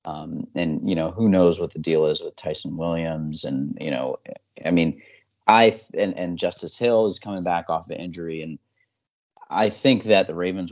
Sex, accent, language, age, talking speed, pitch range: male, American, English, 30-49, 195 wpm, 85-100 Hz